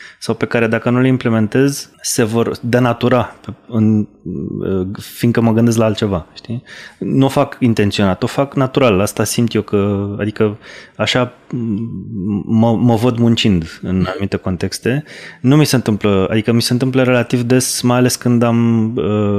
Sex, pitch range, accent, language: male, 105-125 Hz, native, Romanian